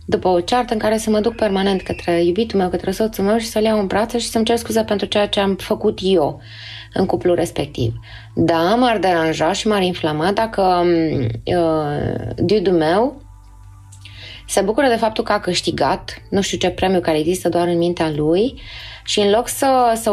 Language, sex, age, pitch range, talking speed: Romanian, female, 20-39, 160-215 Hz, 195 wpm